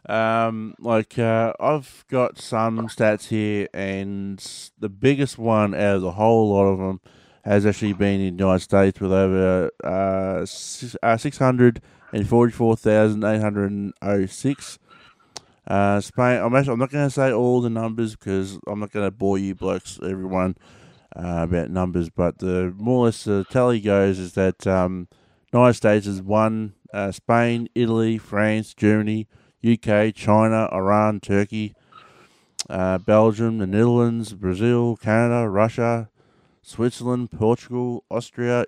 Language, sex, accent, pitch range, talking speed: English, male, Australian, 100-120 Hz, 140 wpm